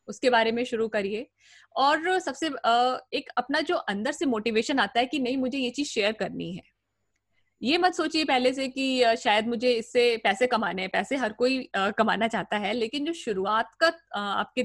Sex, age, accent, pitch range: female, 20-39, native, 205-260 Hz